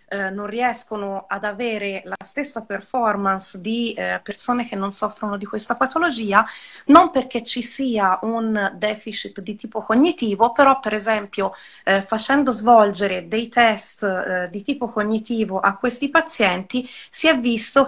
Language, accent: Italian, native